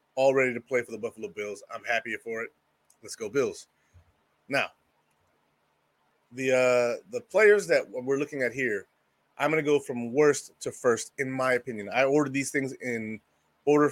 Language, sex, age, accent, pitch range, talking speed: English, male, 30-49, American, 120-150 Hz, 180 wpm